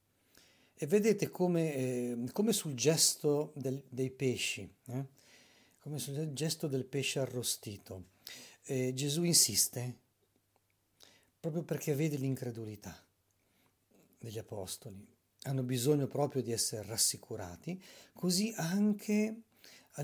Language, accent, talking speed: Italian, native, 105 wpm